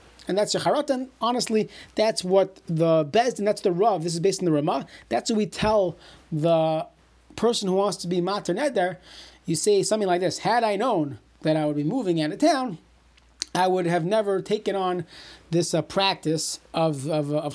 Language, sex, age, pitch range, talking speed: English, male, 30-49, 165-215 Hz, 195 wpm